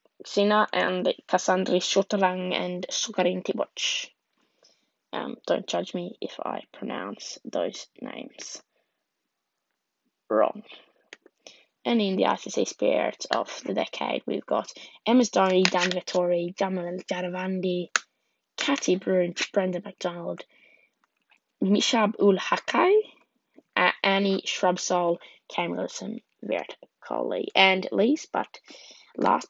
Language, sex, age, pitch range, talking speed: English, female, 10-29, 180-220 Hz, 95 wpm